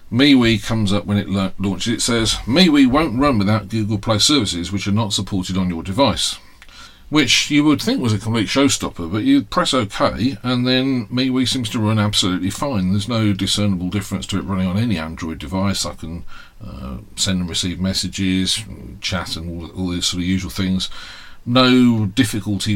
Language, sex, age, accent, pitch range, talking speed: English, male, 40-59, British, 95-120 Hz, 190 wpm